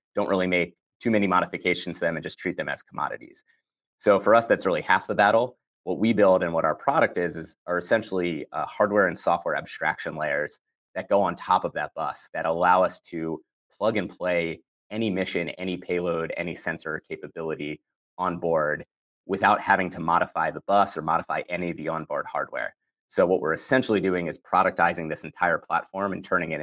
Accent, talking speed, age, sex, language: American, 200 wpm, 30-49, male, English